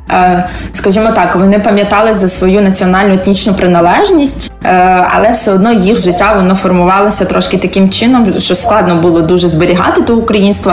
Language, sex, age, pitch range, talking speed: Ukrainian, female, 20-39, 180-205 Hz, 145 wpm